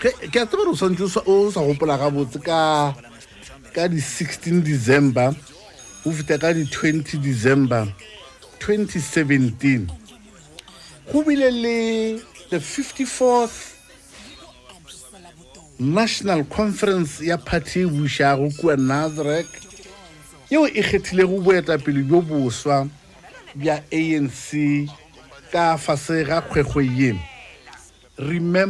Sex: male